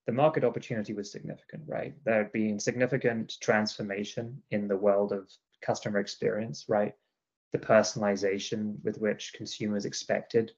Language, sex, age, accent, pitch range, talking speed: English, male, 20-39, British, 100-110 Hz, 135 wpm